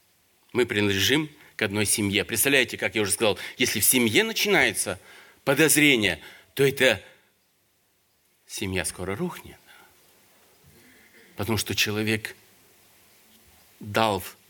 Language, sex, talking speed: Russian, male, 100 wpm